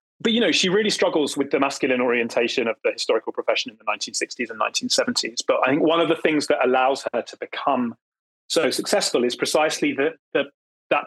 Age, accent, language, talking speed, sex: 30-49, British, English, 205 wpm, male